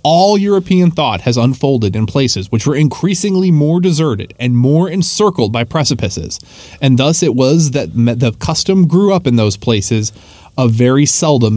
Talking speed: 165 wpm